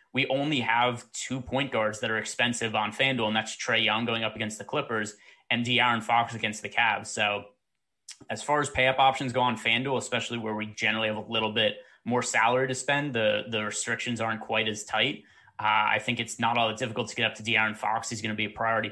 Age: 20-39